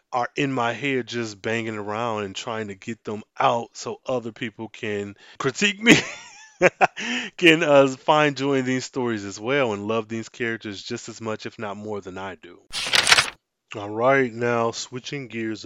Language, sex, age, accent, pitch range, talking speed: English, male, 20-39, American, 110-135 Hz, 175 wpm